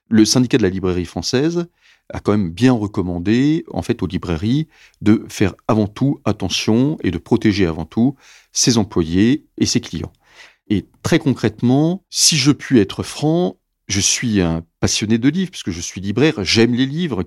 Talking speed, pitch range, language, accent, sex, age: 175 wpm, 95-120 Hz, French, French, male, 40-59